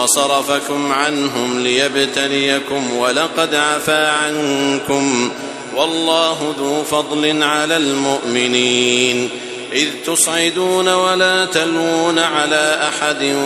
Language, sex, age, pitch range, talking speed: Arabic, male, 50-69, 140-160 Hz, 75 wpm